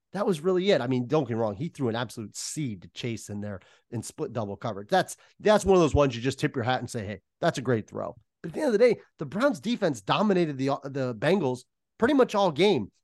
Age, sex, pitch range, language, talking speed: 30-49, male, 125-190 Hz, English, 270 wpm